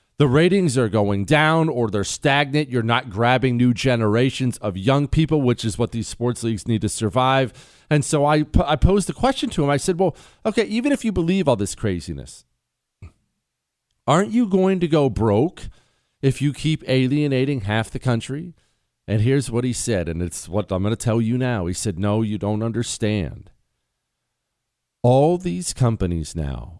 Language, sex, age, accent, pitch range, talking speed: English, male, 40-59, American, 110-155 Hz, 185 wpm